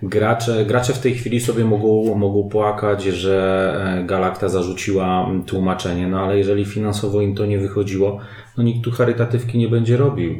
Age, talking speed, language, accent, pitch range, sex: 30-49, 160 wpm, Polish, native, 95-120 Hz, male